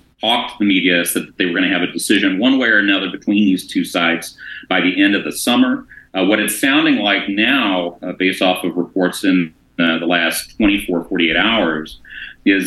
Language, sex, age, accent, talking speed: English, male, 40-59, American, 220 wpm